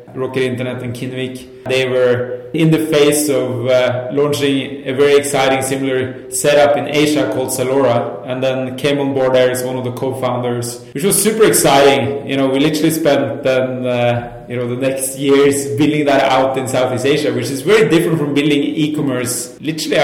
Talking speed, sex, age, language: 190 wpm, male, 20-39, English